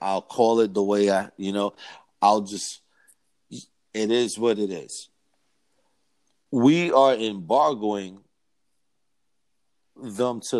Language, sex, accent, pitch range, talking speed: English, male, American, 110-145 Hz, 115 wpm